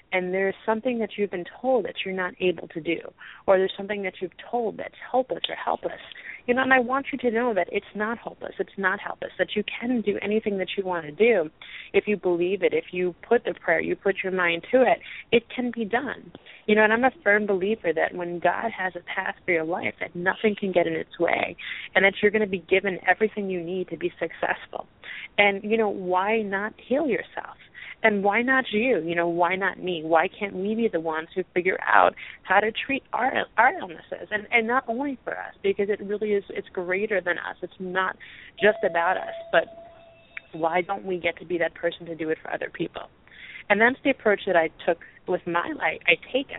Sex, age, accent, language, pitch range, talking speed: female, 30-49, American, English, 175-220 Hz, 230 wpm